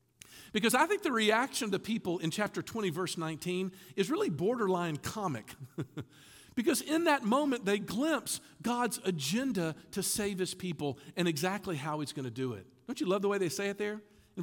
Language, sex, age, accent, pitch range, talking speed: English, male, 50-69, American, 145-240 Hz, 195 wpm